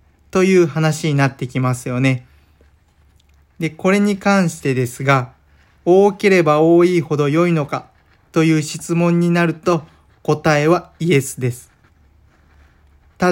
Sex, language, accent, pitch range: male, Japanese, native, 120-170 Hz